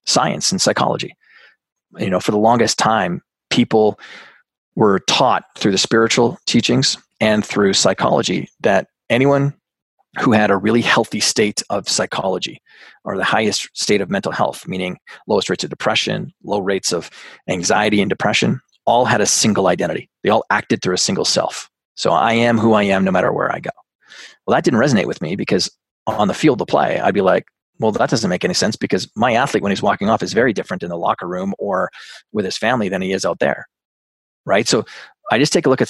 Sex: male